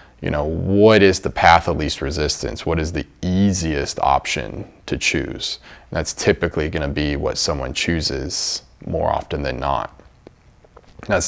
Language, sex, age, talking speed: English, male, 30-49, 155 wpm